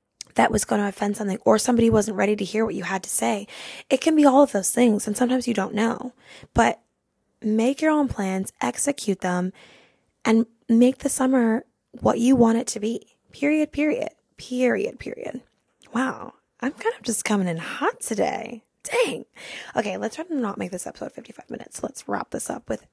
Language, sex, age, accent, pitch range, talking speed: English, female, 10-29, American, 200-265 Hz, 195 wpm